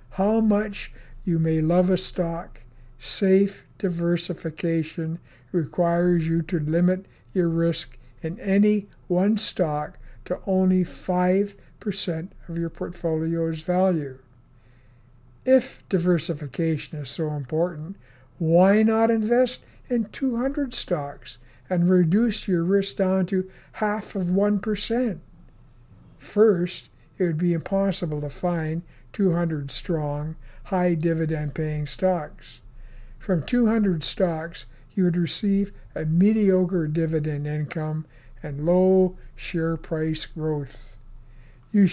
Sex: male